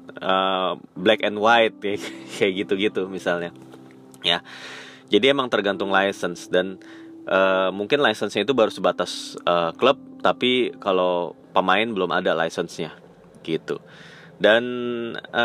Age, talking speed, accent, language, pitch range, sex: 20-39, 115 wpm, native, Indonesian, 90-115 Hz, male